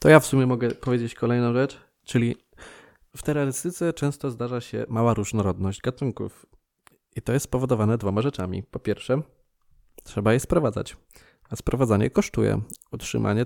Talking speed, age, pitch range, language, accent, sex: 145 wpm, 20-39, 110-130 Hz, Polish, native, male